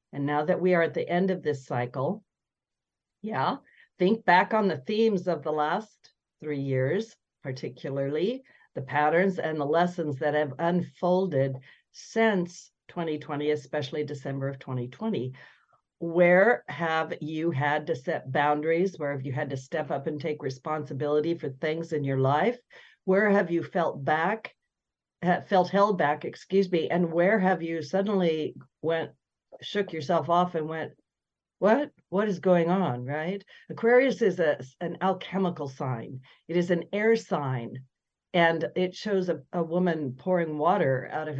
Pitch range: 150-185 Hz